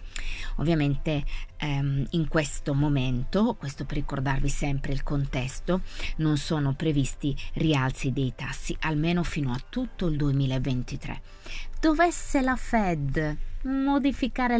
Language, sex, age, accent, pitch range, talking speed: Italian, female, 20-39, native, 135-160 Hz, 110 wpm